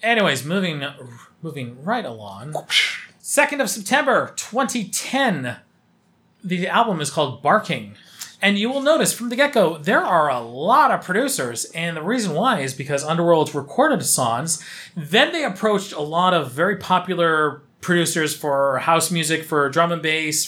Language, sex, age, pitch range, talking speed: English, male, 30-49, 145-190 Hz, 150 wpm